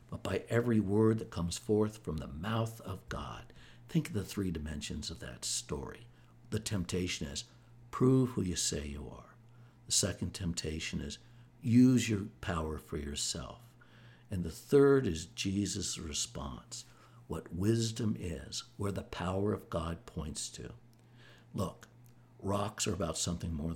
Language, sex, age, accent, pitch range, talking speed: English, male, 60-79, American, 85-120 Hz, 150 wpm